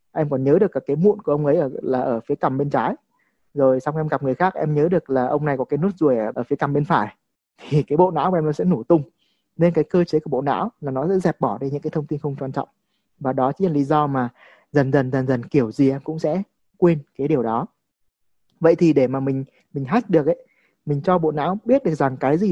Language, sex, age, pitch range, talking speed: Vietnamese, male, 20-39, 135-165 Hz, 280 wpm